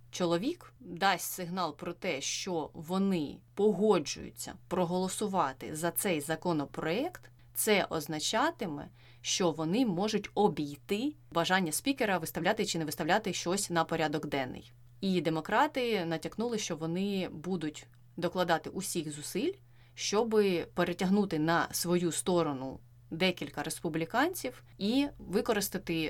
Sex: female